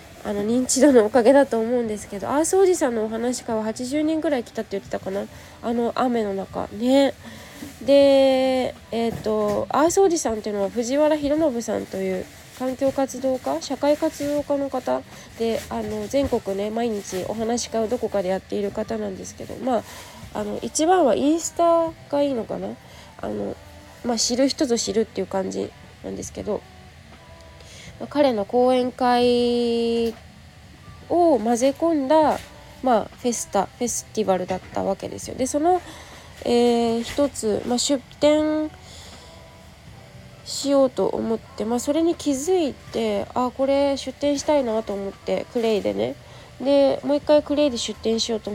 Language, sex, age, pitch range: Japanese, female, 20-39, 210-275 Hz